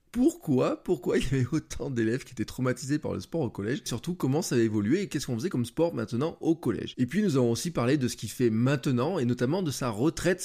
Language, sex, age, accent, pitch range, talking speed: French, male, 20-39, French, 115-155 Hz, 260 wpm